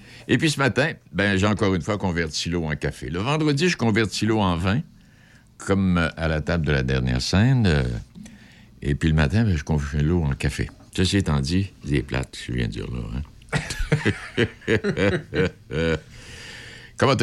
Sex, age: male, 60-79